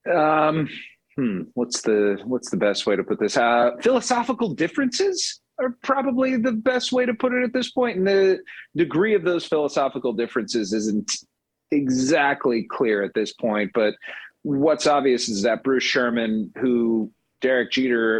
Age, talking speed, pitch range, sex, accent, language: 40-59, 160 wpm, 110-155 Hz, male, American, English